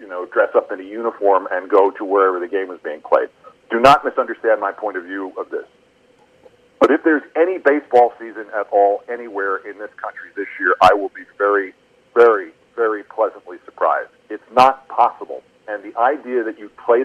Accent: American